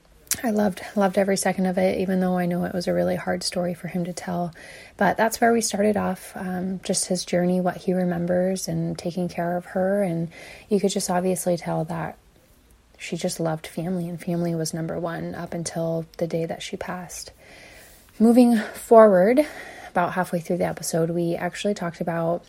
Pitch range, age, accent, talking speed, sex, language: 170-195 Hz, 20-39, American, 195 wpm, female, English